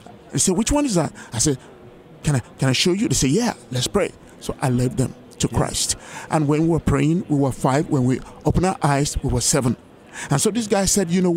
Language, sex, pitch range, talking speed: English, male, 140-185 Hz, 255 wpm